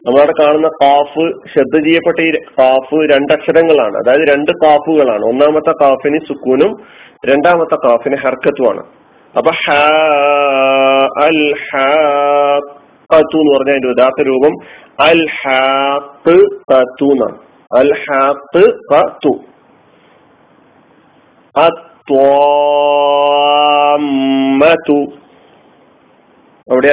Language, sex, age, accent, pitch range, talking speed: Malayalam, male, 40-59, native, 135-155 Hz, 60 wpm